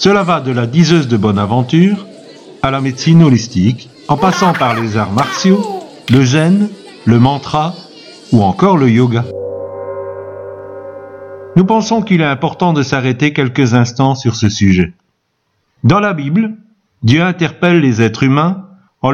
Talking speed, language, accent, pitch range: 145 wpm, French, French, 120-185 Hz